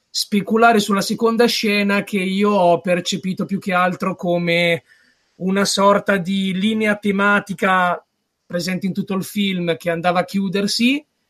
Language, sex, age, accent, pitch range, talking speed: Italian, male, 20-39, native, 175-205 Hz, 140 wpm